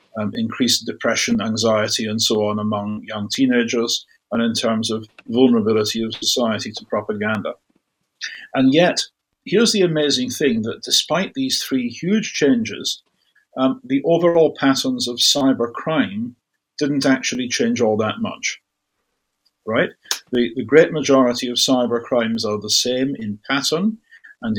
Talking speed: 140 wpm